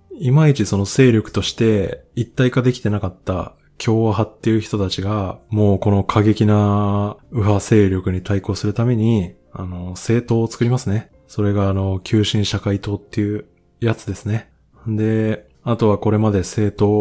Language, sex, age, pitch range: Japanese, male, 20-39, 95-115 Hz